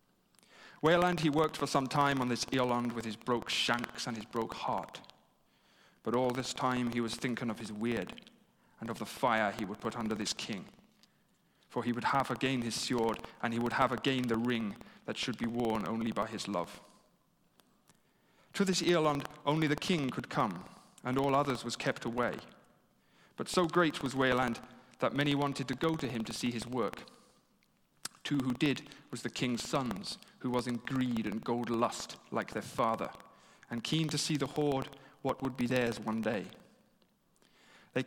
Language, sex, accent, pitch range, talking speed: English, male, British, 115-135 Hz, 190 wpm